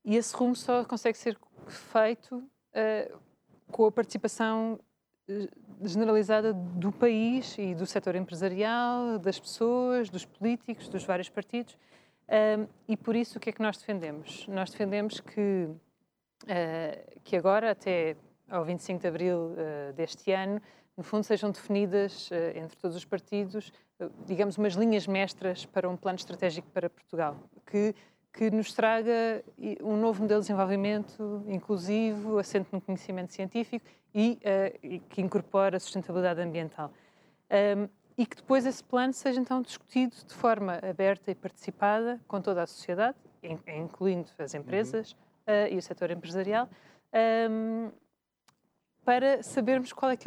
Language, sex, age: Portuguese, female, 20-39